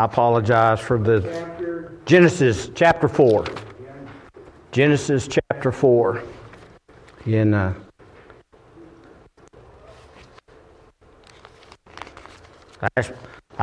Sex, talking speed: male, 55 wpm